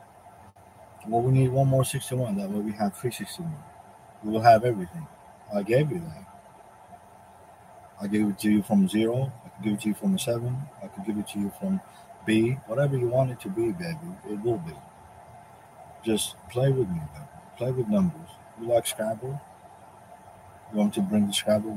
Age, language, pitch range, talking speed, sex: 50-69, English, 110-160 Hz, 195 wpm, male